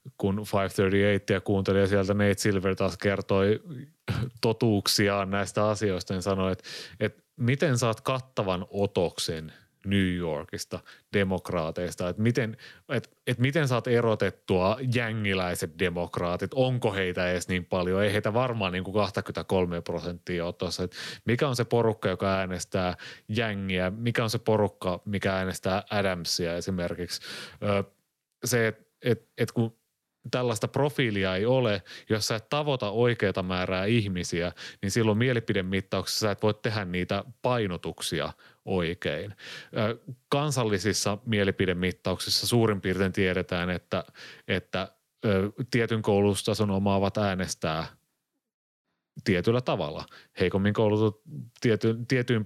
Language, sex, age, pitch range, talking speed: Finnish, male, 30-49, 95-115 Hz, 120 wpm